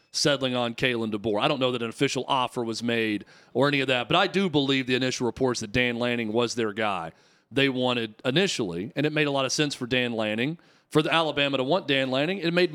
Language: English